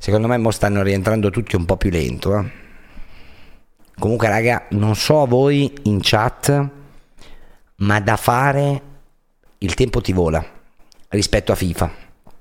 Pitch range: 95-120 Hz